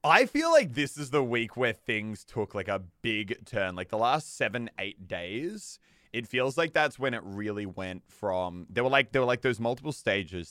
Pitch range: 95-130 Hz